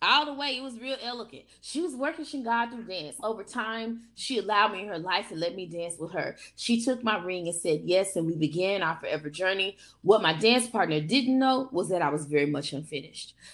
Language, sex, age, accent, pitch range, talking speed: English, female, 20-39, American, 165-260 Hz, 240 wpm